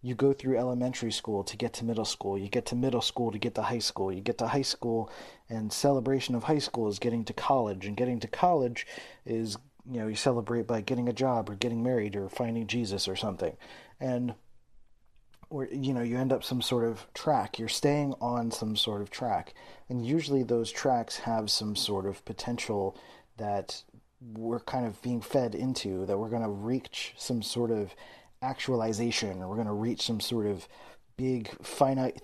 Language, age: English, 30-49